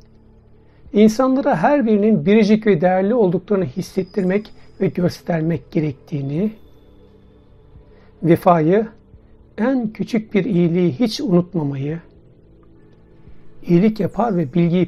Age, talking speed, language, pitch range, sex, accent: 60-79, 90 wpm, Turkish, 155-205 Hz, male, native